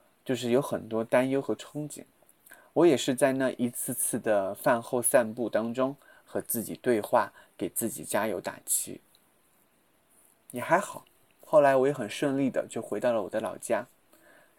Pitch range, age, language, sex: 115-140 Hz, 20-39, Chinese, male